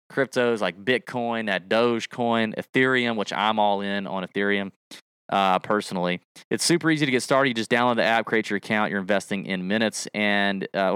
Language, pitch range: English, 105-140 Hz